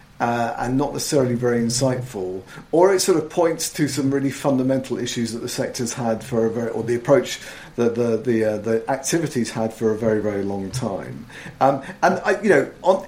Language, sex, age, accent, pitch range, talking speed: English, male, 50-69, British, 125-160 Hz, 210 wpm